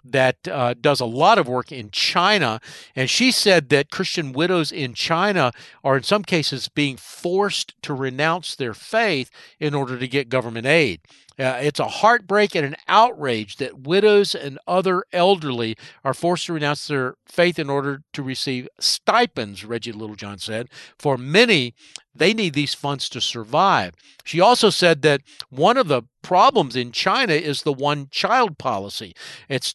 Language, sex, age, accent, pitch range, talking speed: English, male, 50-69, American, 130-175 Hz, 165 wpm